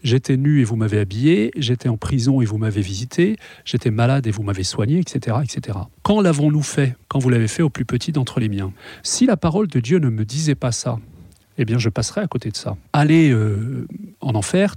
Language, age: French, 40-59